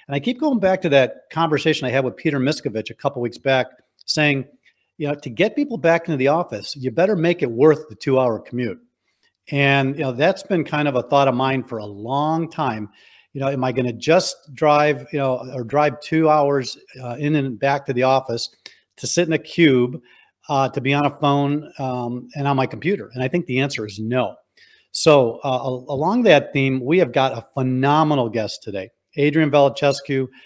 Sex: male